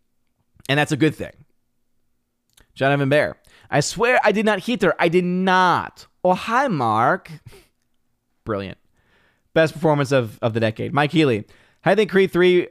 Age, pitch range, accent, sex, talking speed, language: 30-49, 120-155 Hz, American, male, 170 wpm, English